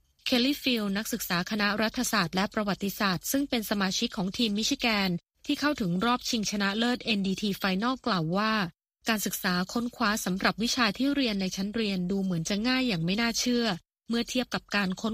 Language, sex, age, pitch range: Thai, female, 20-39, 195-240 Hz